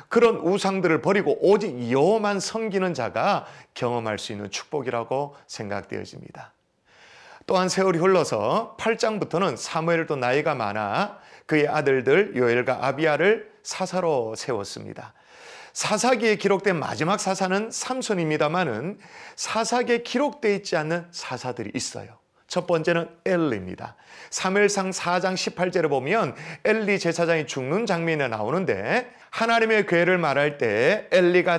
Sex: male